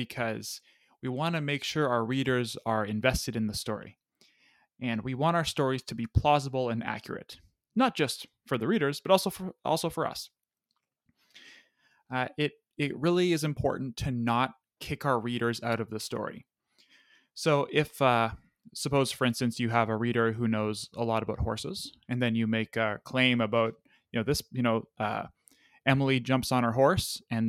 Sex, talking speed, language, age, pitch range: male, 185 wpm, English, 20-39, 115-140 Hz